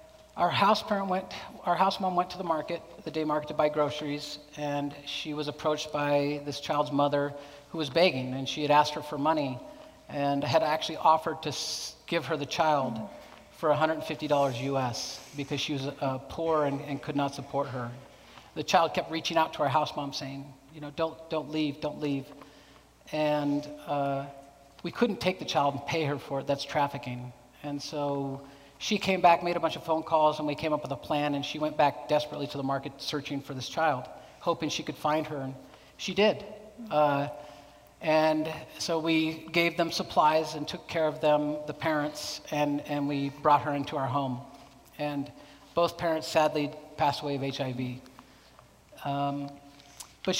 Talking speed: 190 wpm